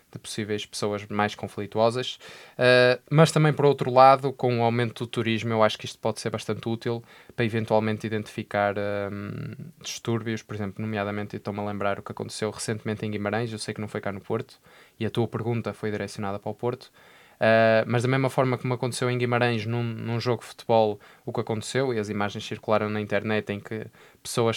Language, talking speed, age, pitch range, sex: Portuguese, 200 wpm, 20-39, 105-120 Hz, male